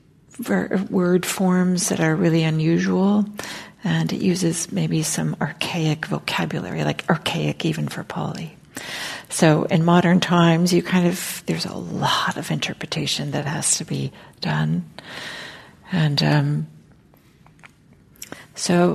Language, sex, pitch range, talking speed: English, female, 165-200 Hz, 120 wpm